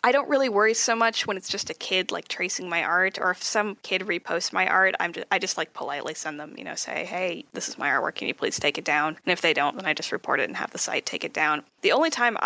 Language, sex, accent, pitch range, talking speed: English, female, American, 170-235 Hz, 310 wpm